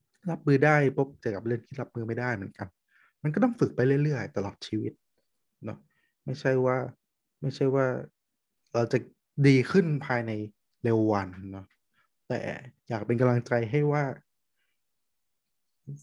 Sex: male